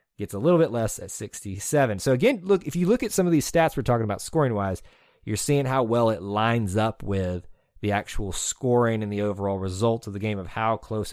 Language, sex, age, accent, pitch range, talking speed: English, male, 30-49, American, 95-120 Hz, 230 wpm